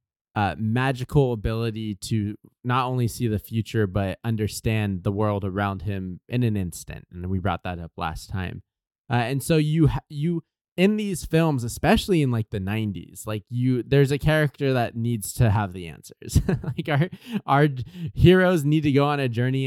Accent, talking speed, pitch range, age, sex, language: American, 180 wpm, 105-140 Hz, 20-39, male, English